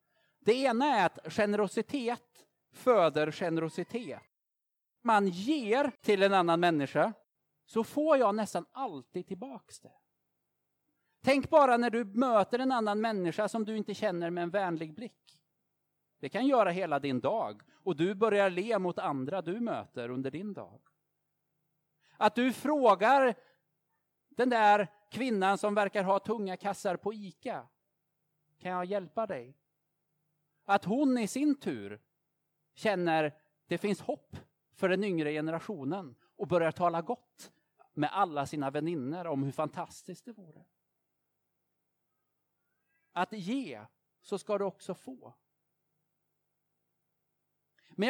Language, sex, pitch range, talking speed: Swedish, male, 155-230 Hz, 130 wpm